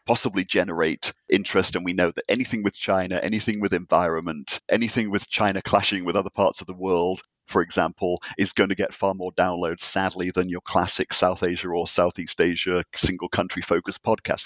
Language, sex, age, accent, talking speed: English, male, 50-69, British, 185 wpm